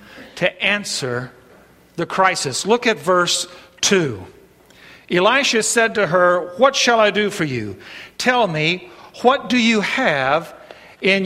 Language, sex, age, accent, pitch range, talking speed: English, male, 50-69, American, 180-230 Hz, 135 wpm